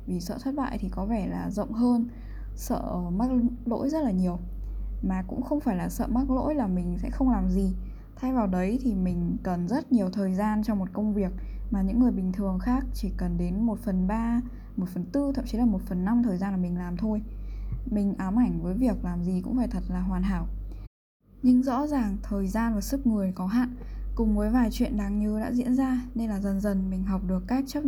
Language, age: Vietnamese, 10-29